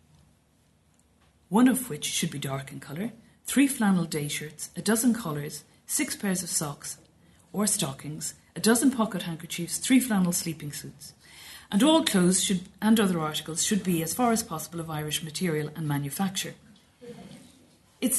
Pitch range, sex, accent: 160-210 Hz, female, Irish